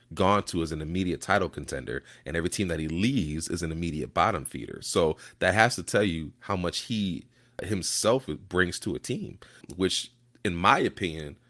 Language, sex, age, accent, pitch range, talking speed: English, male, 30-49, American, 80-100 Hz, 190 wpm